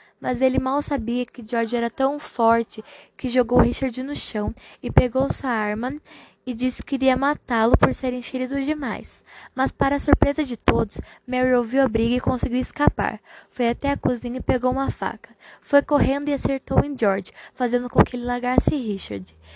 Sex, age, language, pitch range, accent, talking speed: female, 20-39, Portuguese, 235-265 Hz, Brazilian, 185 wpm